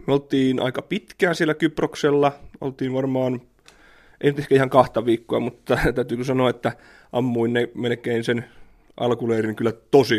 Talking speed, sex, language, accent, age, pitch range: 135 wpm, male, Finnish, native, 30-49, 120-140 Hz